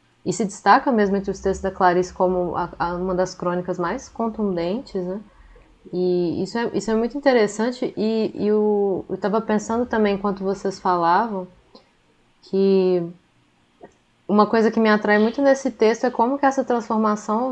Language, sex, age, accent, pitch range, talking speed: Portuguese, female, 20-39, Brazilian, 180-205 Hz, 165 wpm